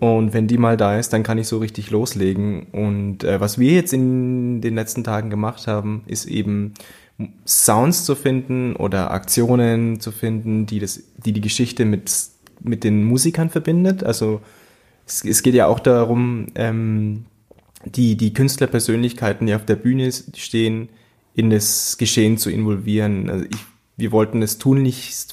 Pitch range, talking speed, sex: 105-120 Hz, 165 wpm, male